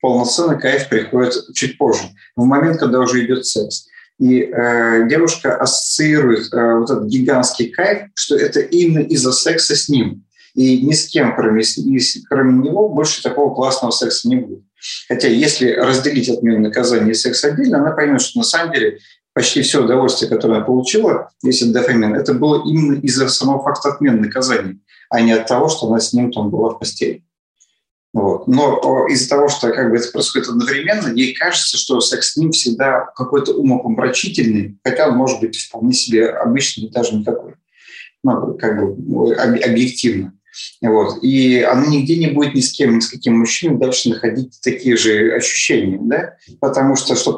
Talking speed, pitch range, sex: 175 wpm, 115-150 Hz, male